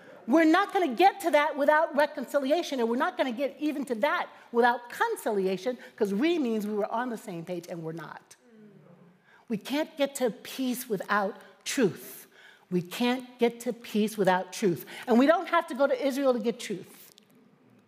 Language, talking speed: English, 190 wpm